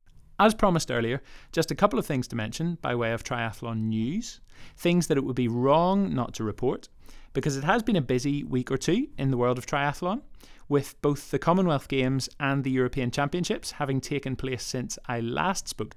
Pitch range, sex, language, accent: 120-165 Hz, male, English, British